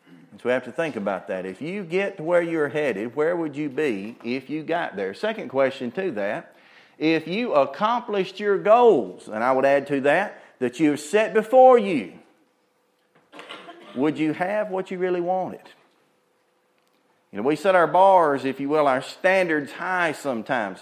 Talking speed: 180 wpm